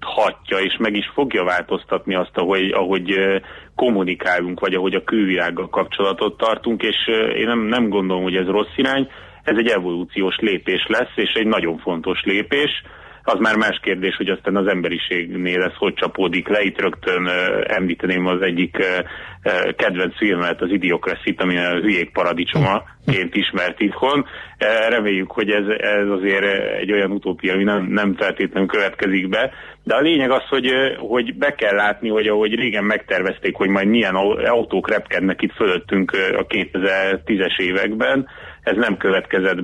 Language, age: Hungarian, 30-49